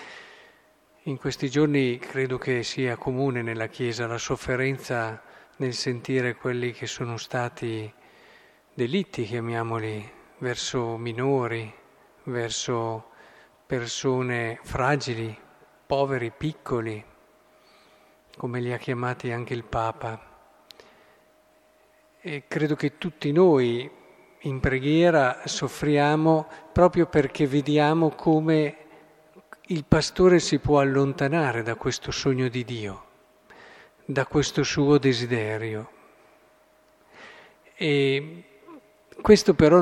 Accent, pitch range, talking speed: native, 120-150 Hz, 95 wpm